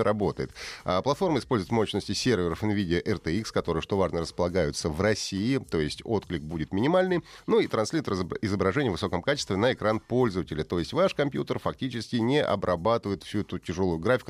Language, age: Russian, 30-49